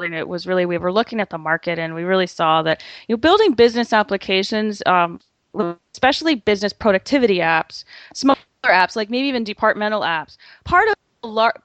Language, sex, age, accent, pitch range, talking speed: English, female, 30-49, American, 180-235 Hz, 175 wpm